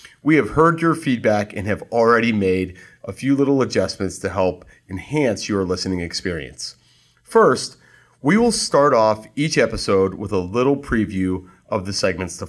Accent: American